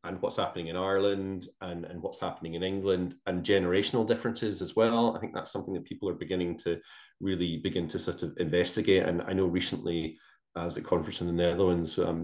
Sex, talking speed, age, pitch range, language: male, 205 wpm, 20-39, 90-100 Hz, English